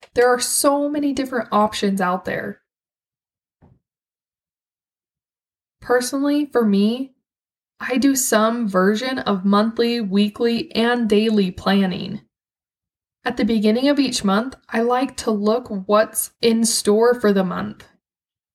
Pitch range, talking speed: 205-240 Hz, 120 wpm